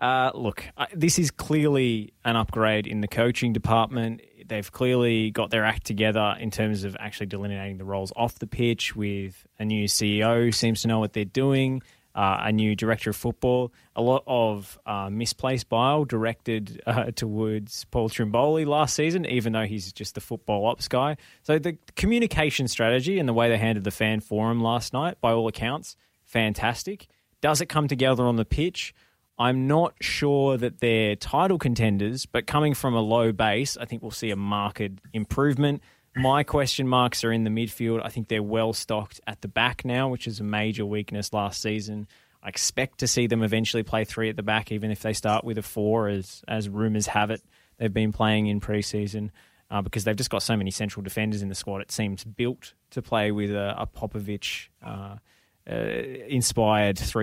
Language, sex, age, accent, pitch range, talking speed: English, male, 20-39, Australian, 105-125 Hz, 190 wpm